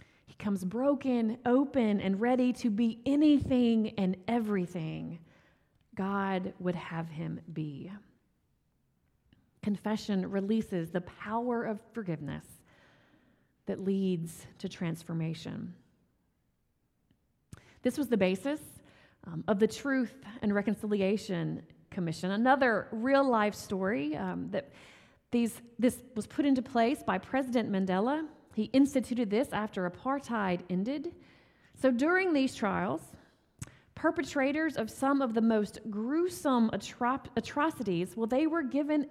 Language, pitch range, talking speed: English, 190-260 Hz, 110 wpm